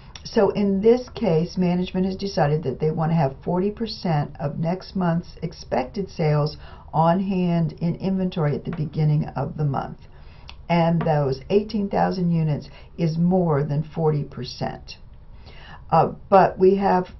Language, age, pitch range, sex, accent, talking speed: English, 60-79, 150-190 Hz, female, American, 140 wpm